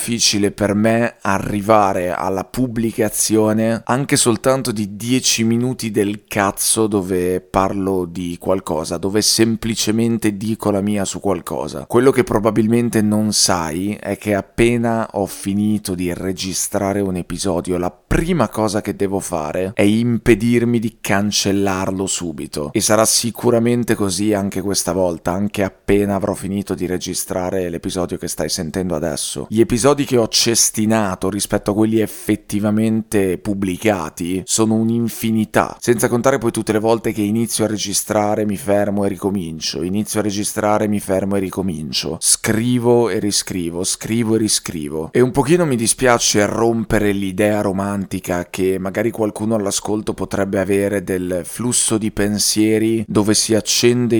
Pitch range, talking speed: 95-115 Hz, 140 wpm